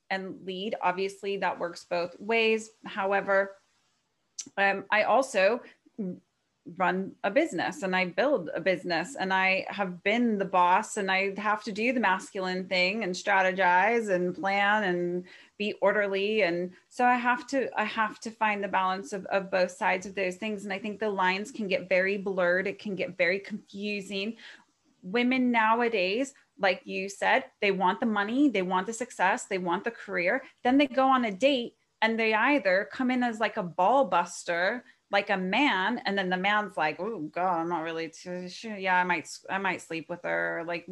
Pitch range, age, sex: 180-220 Hz, 30-49, female